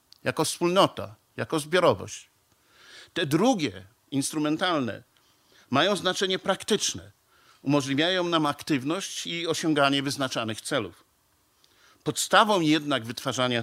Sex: male